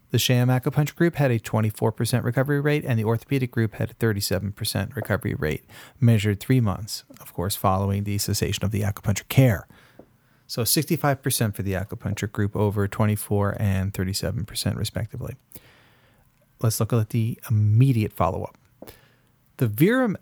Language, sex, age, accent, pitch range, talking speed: English, male, 40-59, American, 105-130 Hz, 145 wpm